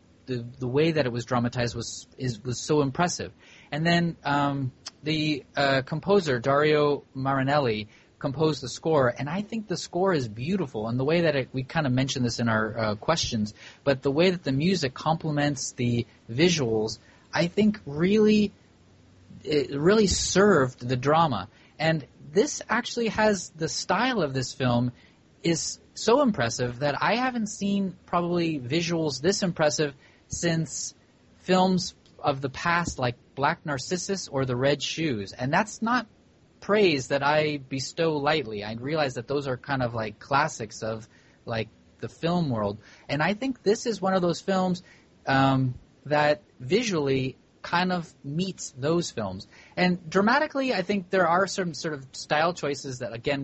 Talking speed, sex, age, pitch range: 165 wpm, male, 30-49, 125-175 Hz